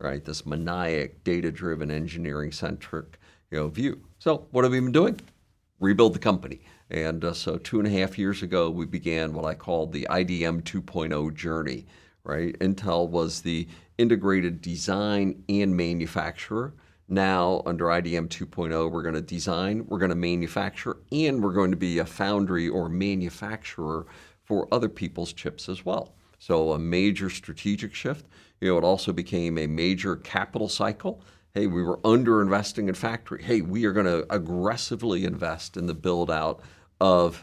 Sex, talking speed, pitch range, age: male, 160 wpm, 85-100 Hz, 50-69